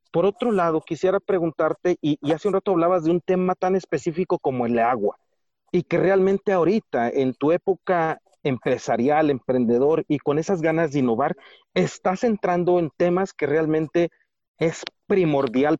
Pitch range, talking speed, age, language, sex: 145-185 Hz, 160 wpm, 40-59, Spanish, male